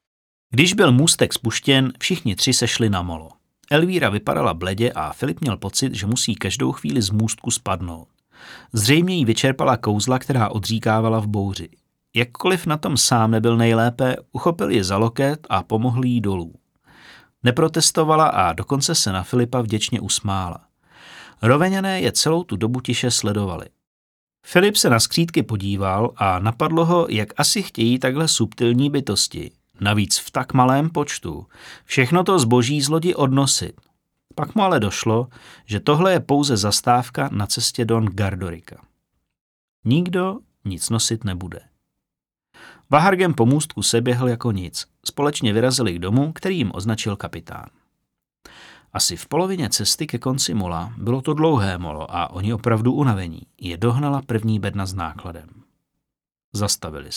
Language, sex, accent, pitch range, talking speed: Czech, male, native, 105-140 Hz, 145 wpm